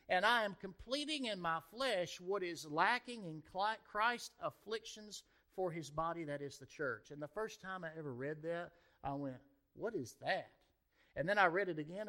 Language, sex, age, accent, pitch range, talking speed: English, male, 50-69, American, 150-205 Hz, 195 wpm